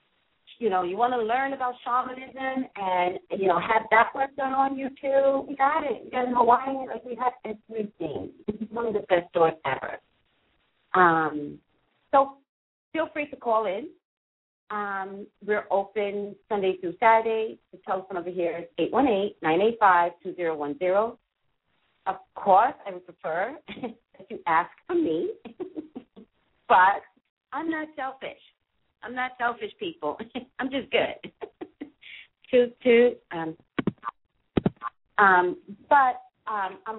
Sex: female